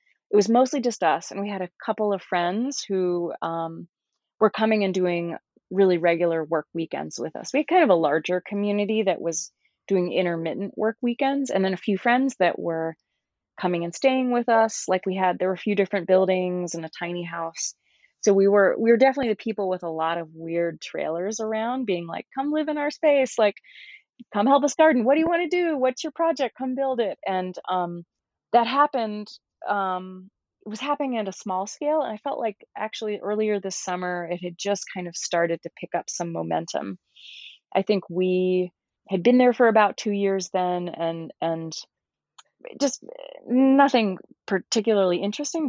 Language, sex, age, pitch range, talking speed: English, female, 30-49, 175-240 Hz, 195 wpm